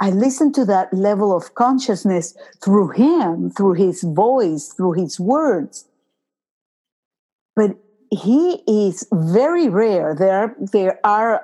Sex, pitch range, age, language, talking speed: female, 185-250 Hz, 50-69, English, 120 wpm